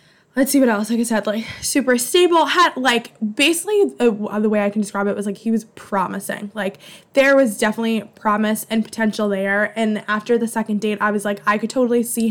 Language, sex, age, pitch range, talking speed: English, female, 10-29, 205-235 Hz, 220 wpm